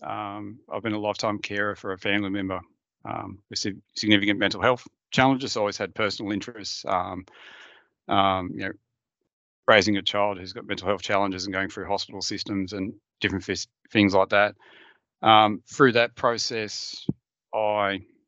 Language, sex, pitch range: English, male, 95-110 Hz